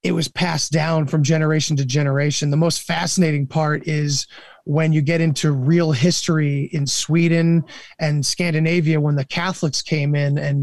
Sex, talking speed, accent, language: male, 165 wpm, American, English